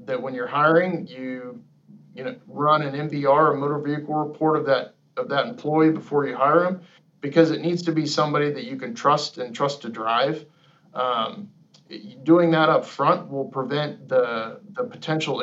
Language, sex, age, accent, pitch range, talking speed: English, male, 40-59, American, 135-160 Hz, 185 wpm